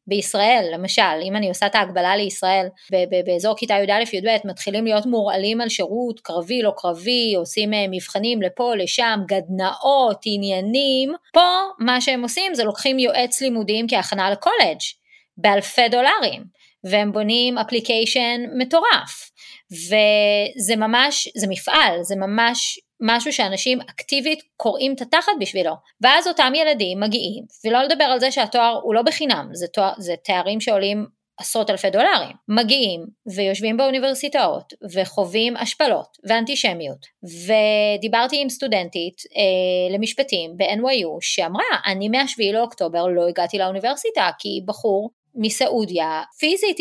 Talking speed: 125 wpm